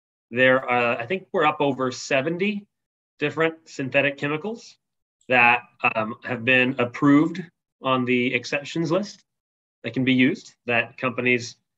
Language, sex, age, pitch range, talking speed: English, male, 30-49, 115-140 Hz, 130 wpm